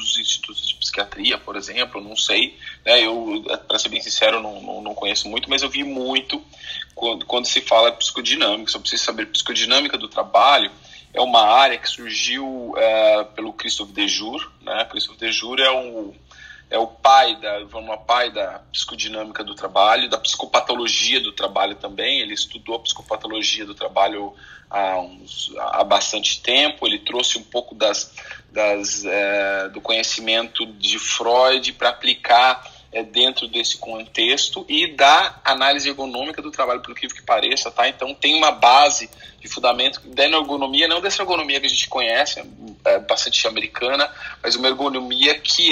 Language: Portuguese